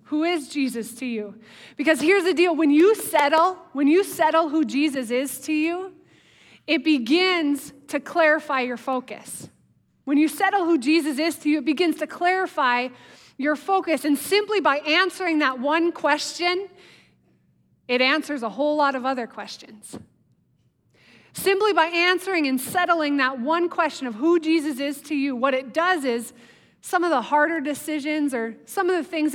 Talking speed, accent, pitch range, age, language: 170 wpm, American, 255-330 Hz, 20-39, English